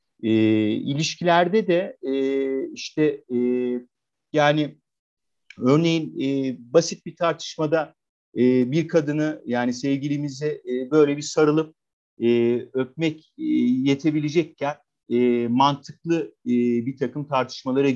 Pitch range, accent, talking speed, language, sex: 115-155 Hz, native, 105 wpm, Turkish, male